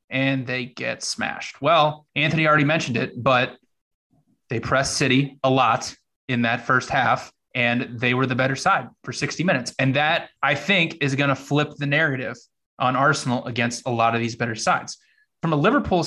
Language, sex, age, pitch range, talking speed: English, male, 20-39, 130-155 Hz, 185 wpm